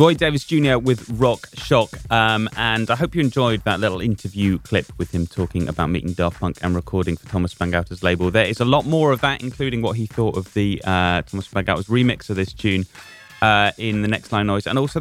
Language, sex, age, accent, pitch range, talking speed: English, male, 30-49, British, 95-120 Hz, 230 wpm